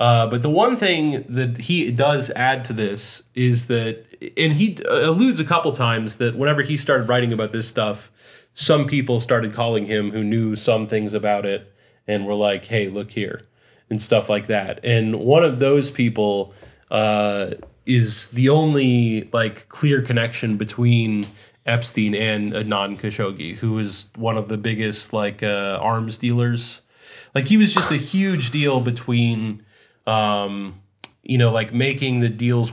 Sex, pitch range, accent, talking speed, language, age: male, 105-120 Hz, American, 165 wpm, English, 30-49